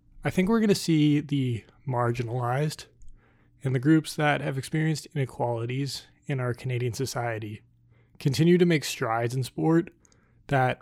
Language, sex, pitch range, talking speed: English, male, 115-145 Hz, 145 wpm